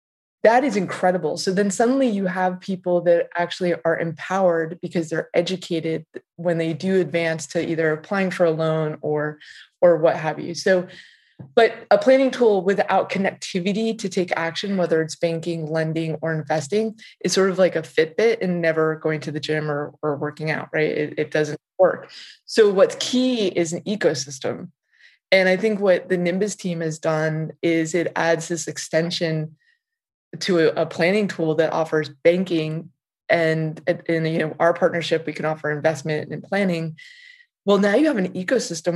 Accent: American